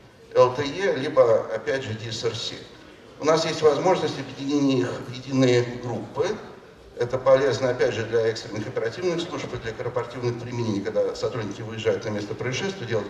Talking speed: 150 wpm